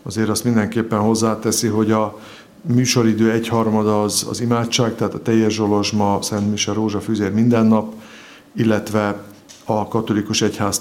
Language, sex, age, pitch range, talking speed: Hungarian, male, 50-69, 110-120 Hz, 135 wpm